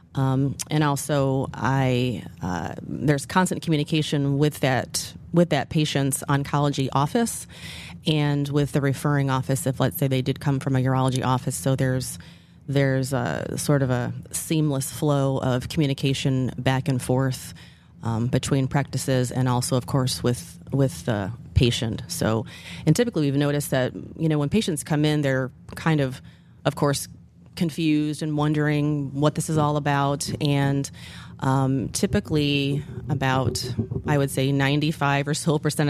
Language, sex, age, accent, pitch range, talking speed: English, female, 30-49, American, 130-145 Hz, 150 wpm